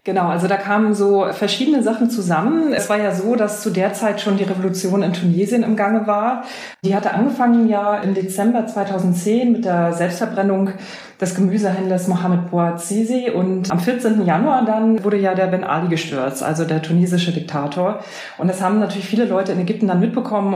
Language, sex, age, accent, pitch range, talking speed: German, female, 30-49, German, 180-215 Hz, 185 wpm